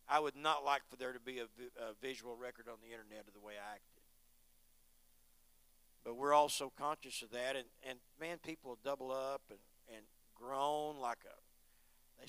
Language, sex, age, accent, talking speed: English, male, 50-69, American, 190 wpm